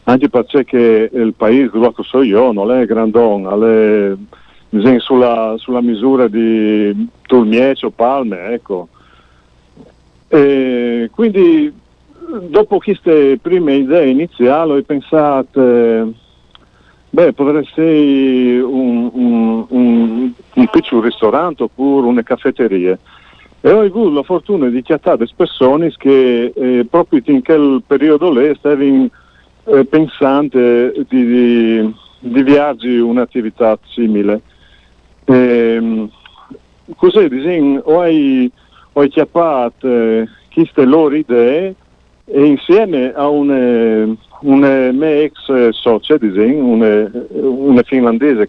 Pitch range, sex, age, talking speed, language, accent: 115-145 Hz, male, 50-69, 100 wpm, Italian, native